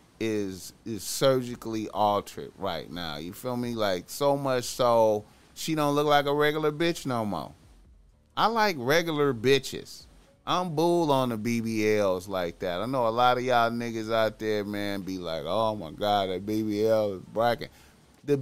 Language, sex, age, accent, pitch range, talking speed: English, male, 30-49, American, 95-145 Hz, 175 wpm